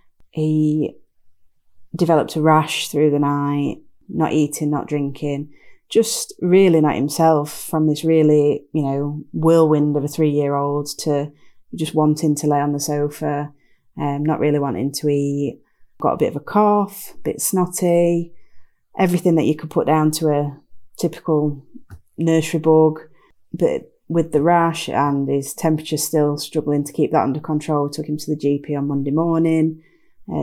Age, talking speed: 30-49, 165 wpm